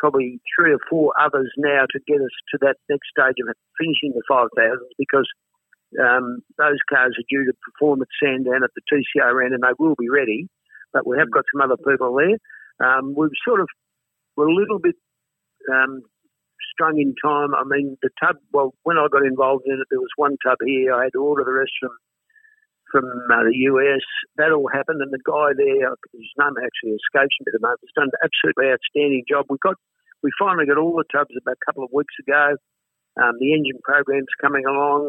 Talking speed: 210 wpm